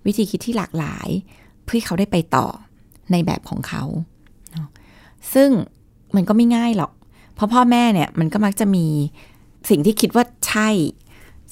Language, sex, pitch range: Thai, female, 150-210 Hz